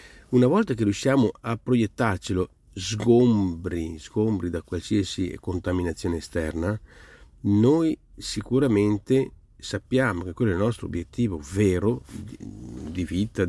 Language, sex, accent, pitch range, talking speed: Italian, male, native, 90-115 Hz, 105 wpm